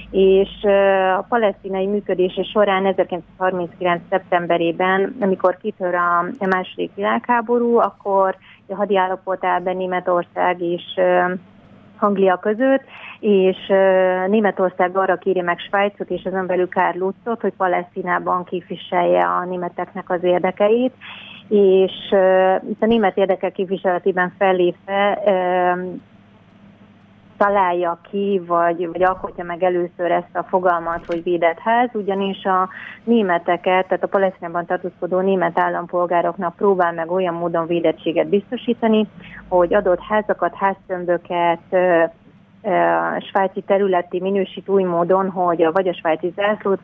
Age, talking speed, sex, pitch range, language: 30-49, 115 wpm, female, 175-195 Hz, Hungarian